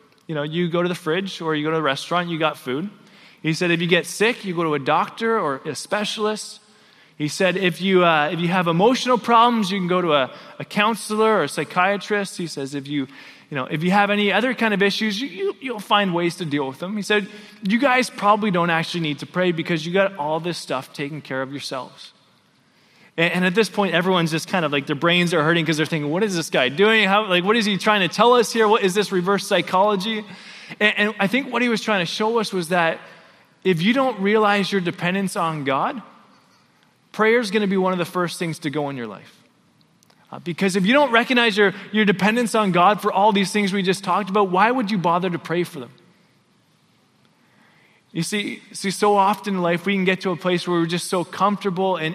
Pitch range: 170-210 Hz